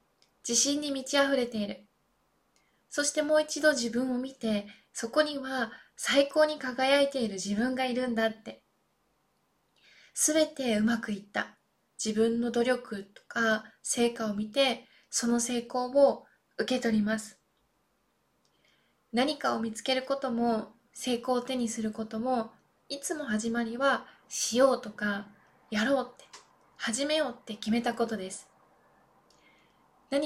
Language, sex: Japanese, female